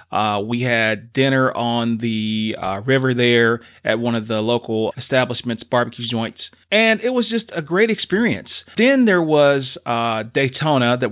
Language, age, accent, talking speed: English, 40-59, American, 160 wpm